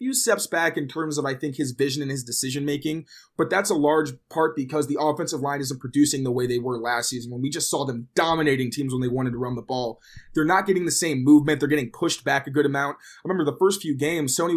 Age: 20-39